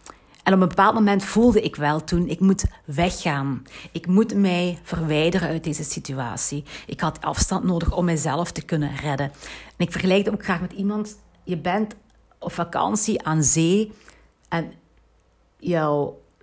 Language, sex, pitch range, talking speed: Dutch, female, 150-195 Hz, 160 wpm